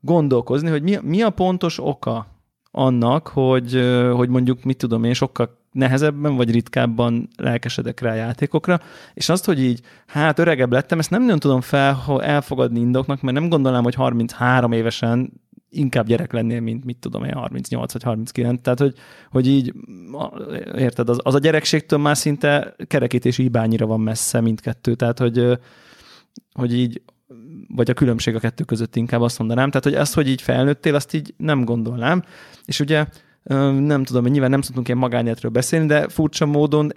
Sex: male